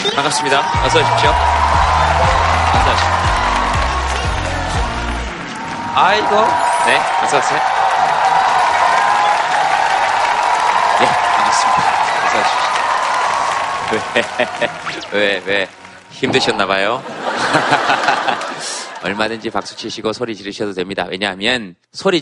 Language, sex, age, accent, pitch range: Korean, male, 20-39, native, 95-145 Hz